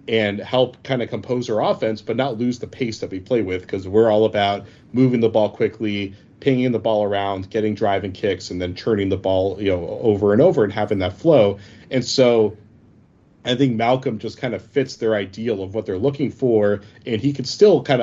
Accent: American